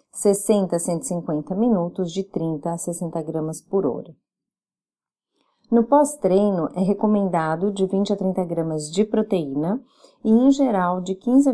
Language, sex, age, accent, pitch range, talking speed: Portuguese, female, 30-49, Brazilian, 175-220 Hz, 145 wpm